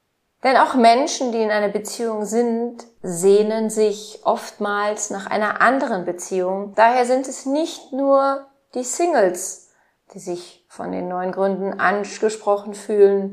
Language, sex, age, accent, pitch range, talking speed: German, female, 30-49, German, 185-225 Hz, 135 wpm